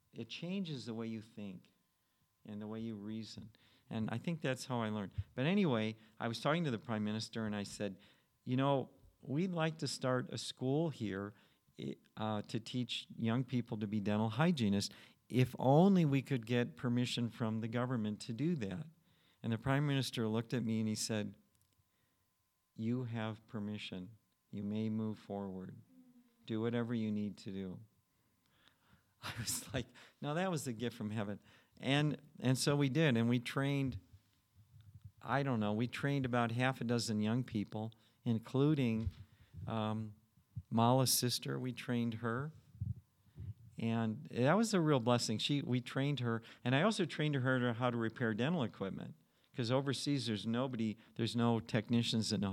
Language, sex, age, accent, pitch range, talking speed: English, male, 50-69, American, 110-130 Hz, 170 wpm